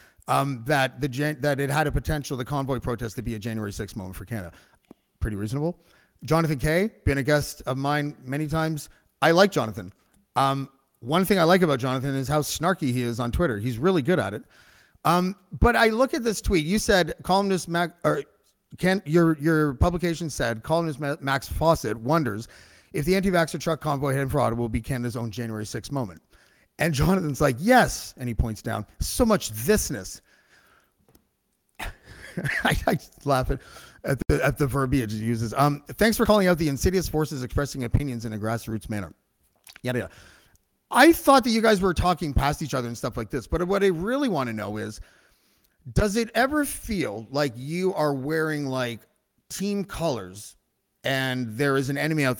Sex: male